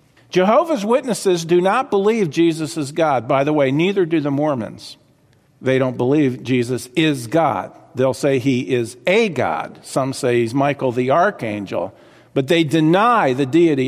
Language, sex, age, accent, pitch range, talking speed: English, male, 50-69, American, 140-190 Hz, 165 wpm